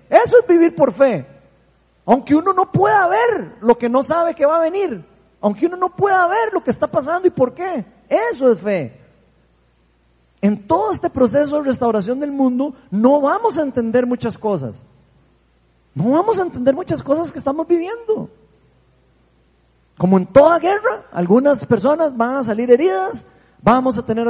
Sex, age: male, 30-49